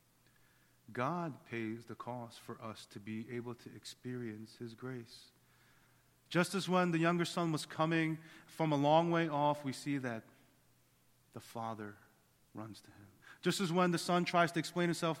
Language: English